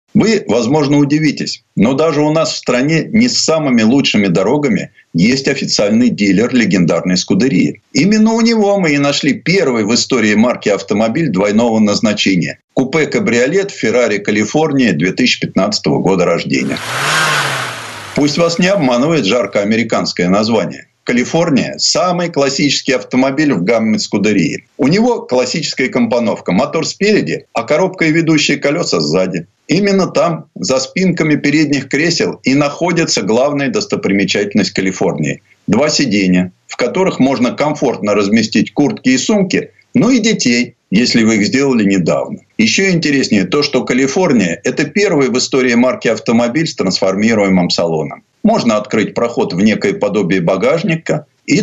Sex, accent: male, native